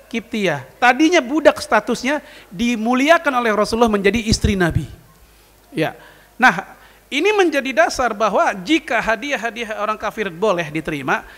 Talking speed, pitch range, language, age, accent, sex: 115 wpm, 195-260 Hz, Indonesian, 40-59, native, male